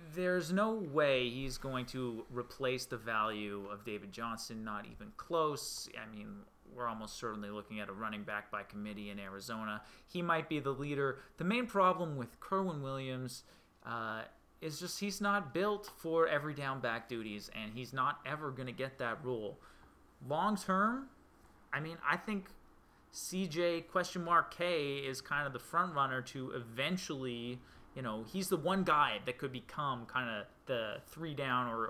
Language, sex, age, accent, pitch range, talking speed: English, male, 30-49, American, 115-150 Hz, 175 wpm